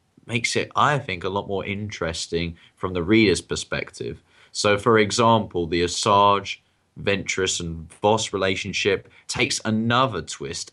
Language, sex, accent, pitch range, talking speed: English, male, British, 85-105 Hz, 135 wpm